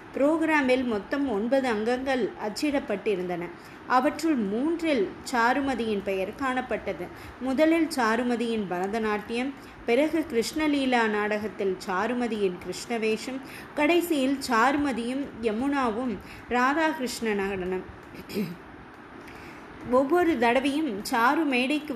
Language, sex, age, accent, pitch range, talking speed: Tamil, female, 20-39, native, 210-275 Hz, 75 wpm